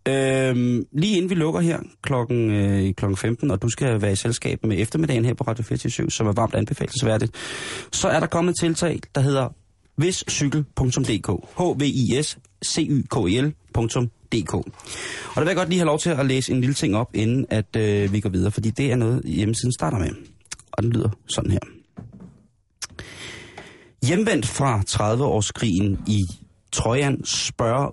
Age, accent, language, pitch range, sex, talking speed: 30-49, native, Danish, 105-140 Hz, male, 165 wpm